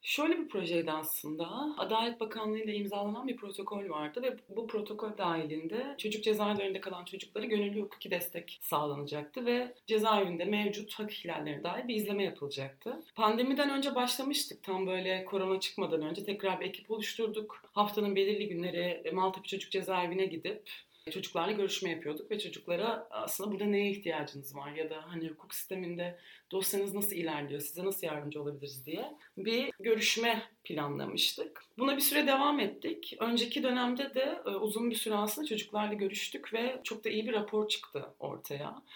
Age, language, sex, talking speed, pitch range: 30-49, Turkish, female, 150 wpm, 175-220 Hz